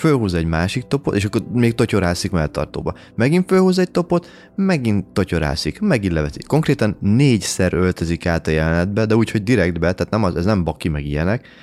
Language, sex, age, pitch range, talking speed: Hungarian, male, 20-39, 80-110 Hz, 180 wpm